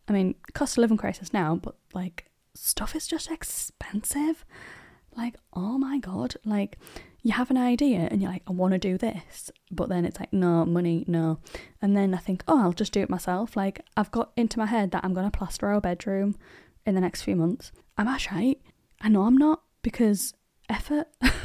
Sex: female